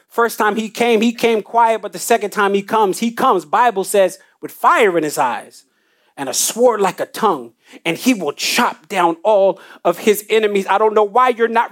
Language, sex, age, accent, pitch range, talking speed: English, male, 30-49, American, 190-245 Hz, 220 wpm